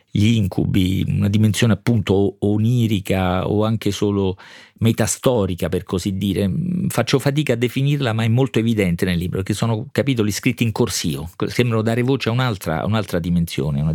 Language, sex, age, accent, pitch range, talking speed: Italian, male, 40-59, native, 90-115 Hz, 165 wpm